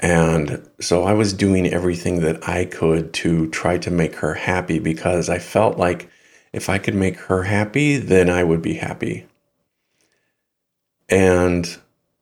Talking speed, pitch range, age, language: 150 wpm, 85-110 Hz, 50-69, English